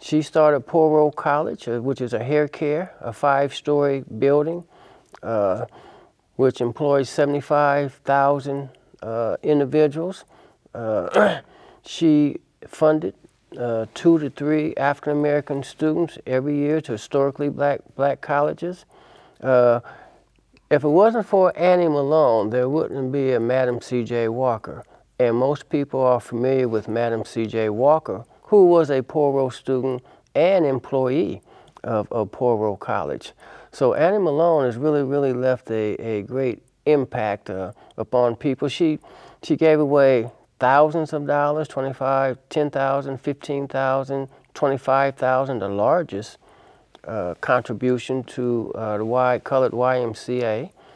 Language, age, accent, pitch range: English, 50-69, American, 125-145 Hz